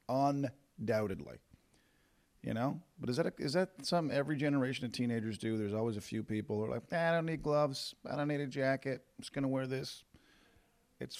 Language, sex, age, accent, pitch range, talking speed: English, male, 40-59, American, 110-145 Hz, 205 wpm